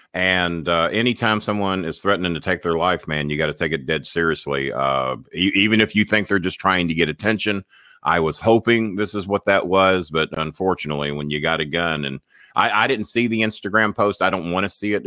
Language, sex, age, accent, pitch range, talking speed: English, male, 50-69, American, 80-100 Hz, 235 wpm